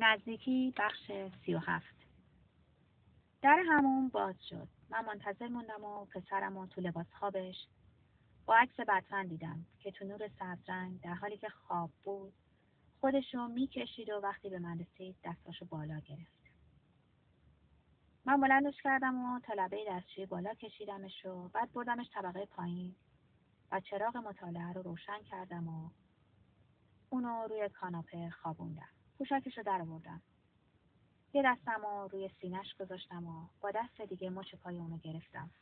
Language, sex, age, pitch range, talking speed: Persian, female, 30-49, 170-220 Hz, 135 wpm